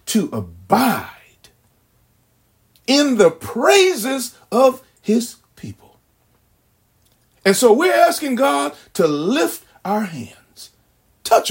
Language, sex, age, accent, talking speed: English, male, 40-59, American, 95 wpm